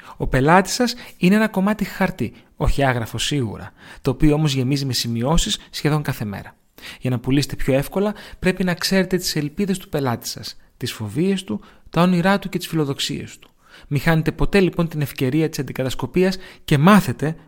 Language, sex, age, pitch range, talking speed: Greek, male, 30-49, 130-185 Hz, 180 wpm